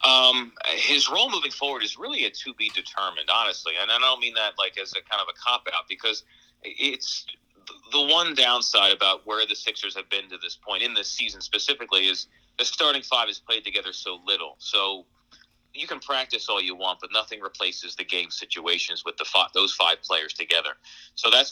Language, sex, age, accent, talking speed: English, male, 40-59, American, 200 wpm